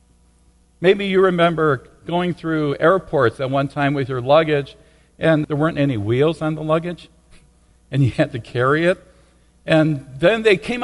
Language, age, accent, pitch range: English, 50-69, American, 120-190 Hz